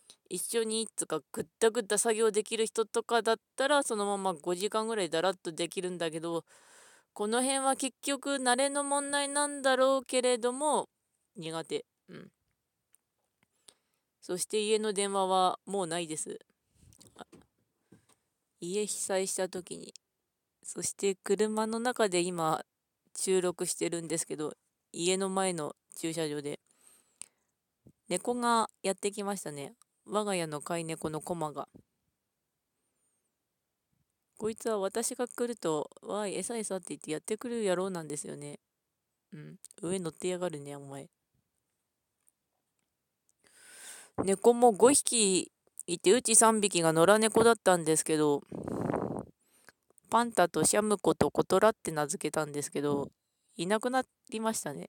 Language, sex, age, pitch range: Japanese, female, 20-39, 170-230 Hz